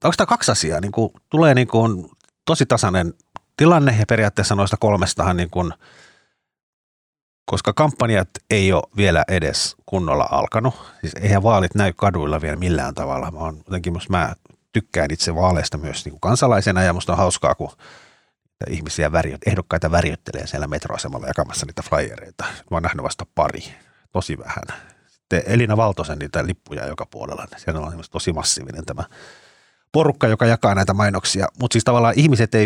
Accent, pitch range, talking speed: native, 85-110 Hz, 140 wpm